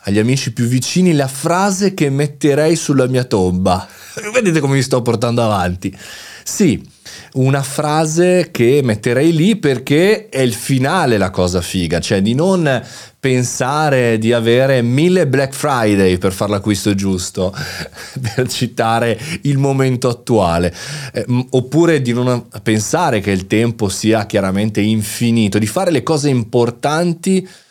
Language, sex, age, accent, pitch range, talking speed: Italian, male, 30-49, native, 100-135 Hz, 140 wpm